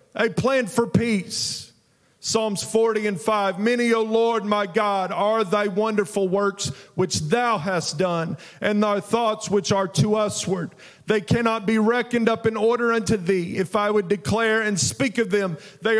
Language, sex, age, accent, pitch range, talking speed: English, male, 40-59, American, 180-230 Hz, 175 wpm